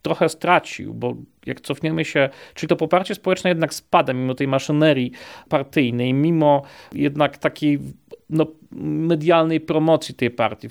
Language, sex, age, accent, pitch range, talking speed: Polish, male, 40-59, native, 135-175 Hz, 130 wpm